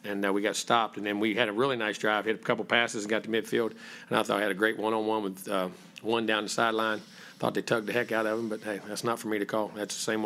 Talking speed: 315 wpm